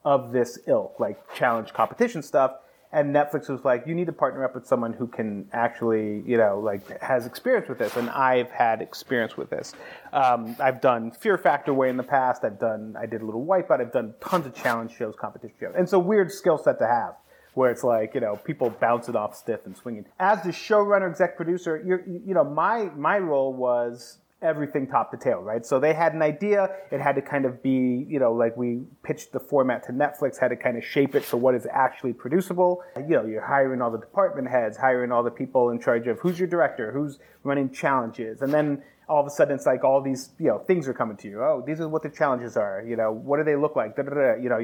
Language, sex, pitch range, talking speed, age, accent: English, male, 120-160 Hz, 240 wpm, 30-49, American